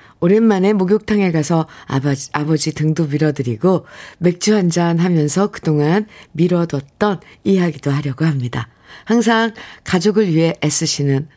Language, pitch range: Korean, 150-195 Hz